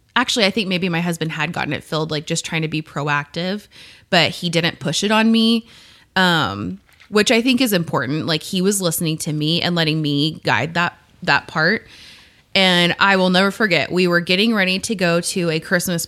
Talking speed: 210 wpm